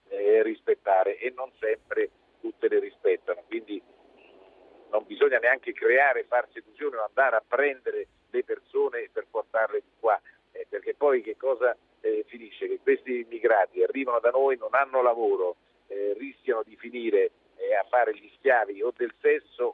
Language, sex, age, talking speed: Italian, male, 50-69, 160 wpm